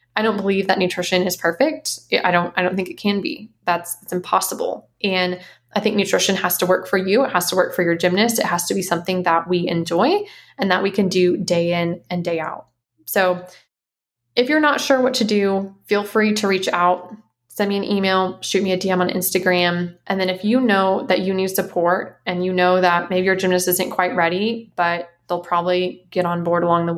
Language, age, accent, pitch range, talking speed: English, 20-39, American, 175-200 Hz, 225 wpm